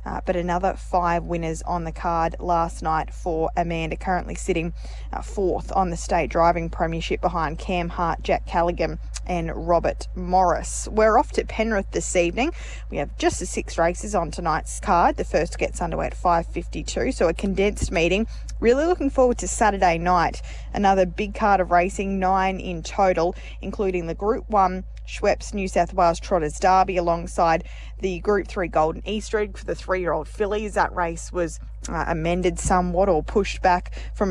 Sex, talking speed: female, 170 wpm